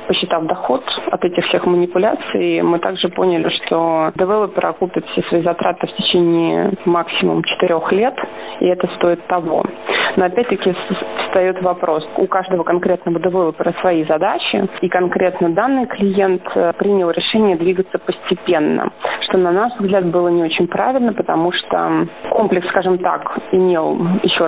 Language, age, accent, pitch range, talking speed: Russian, 20-39, native, 170-190 Hz, 140 wpm